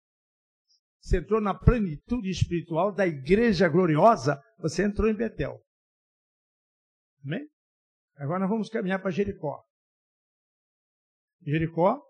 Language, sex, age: Portuguese, male, 60-79